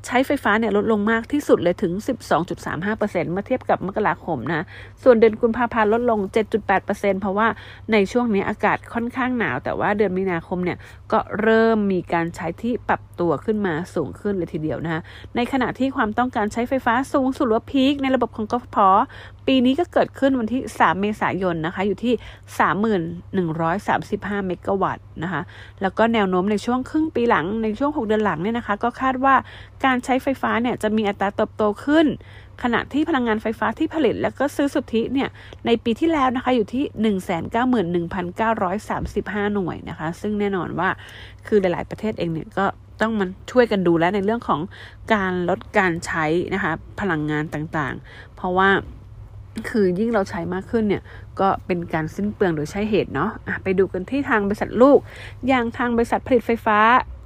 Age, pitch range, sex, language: 30-49, 180-235 Hz, female, English